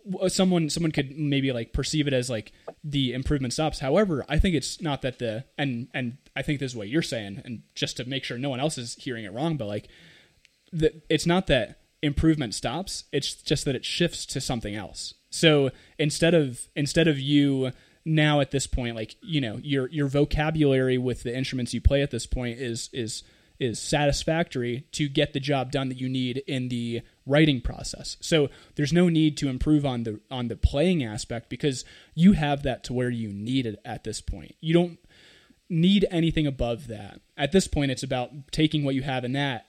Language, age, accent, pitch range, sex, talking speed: English, 20-39, American, 115-150 Hz, male, 205 wpm